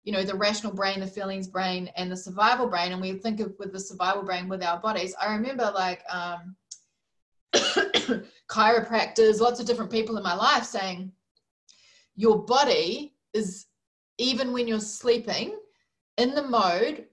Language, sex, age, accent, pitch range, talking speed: English, female, 20-39, Australian, 190-235 Hz, 160 wpm